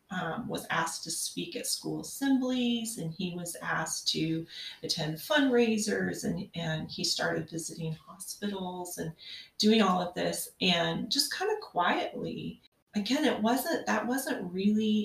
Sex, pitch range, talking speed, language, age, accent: female, 160-215 Hz, 150 wpm, English, 30-49, American